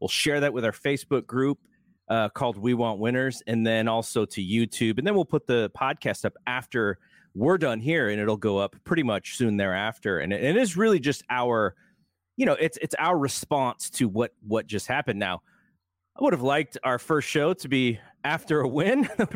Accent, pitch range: American, 105-145 Hz